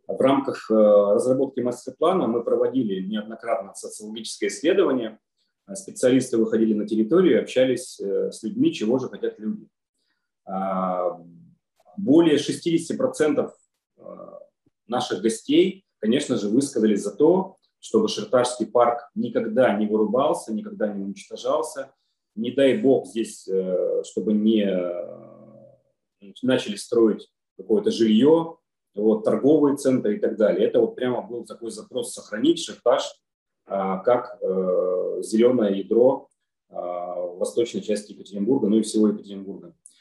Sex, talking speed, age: male, 110 wpm, 30-49